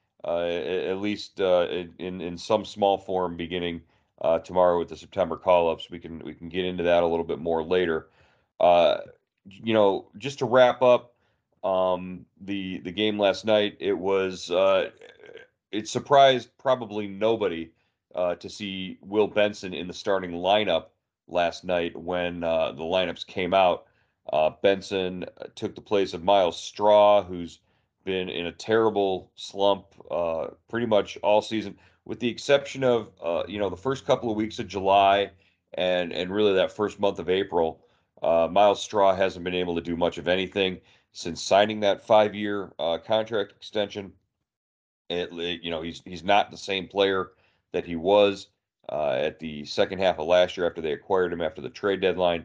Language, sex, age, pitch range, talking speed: English, male, 40-59, 85-105 Hz, 175 wpm